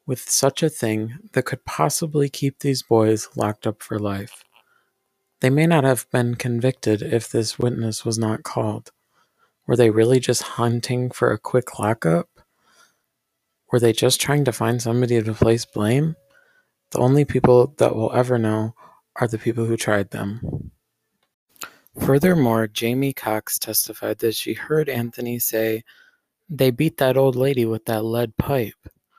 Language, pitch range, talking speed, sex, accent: English, 110-135 Hz, 155 wpm, male, American